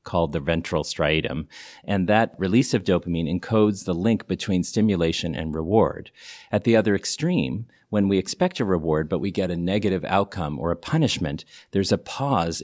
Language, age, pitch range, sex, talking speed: English, 40-59, 90-110 Hz, male, 175 wpm